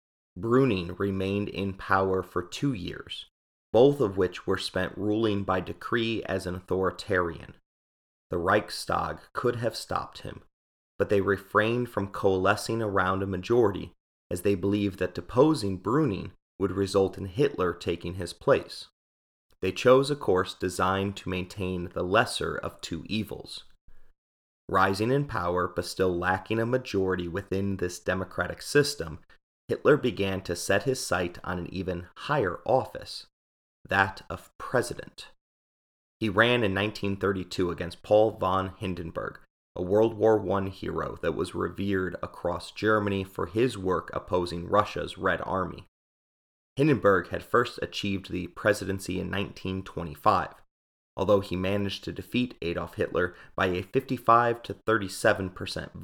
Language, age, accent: English, 30-49, American